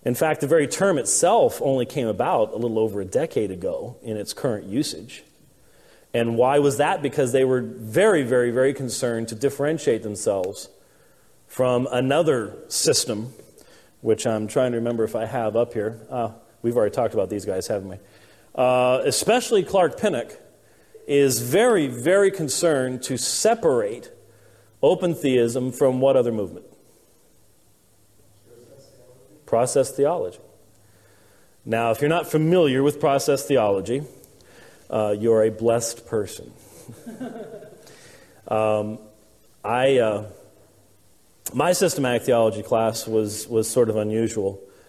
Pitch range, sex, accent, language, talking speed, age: 110-140 Hz, male, American, English, 130 wpm, 40-59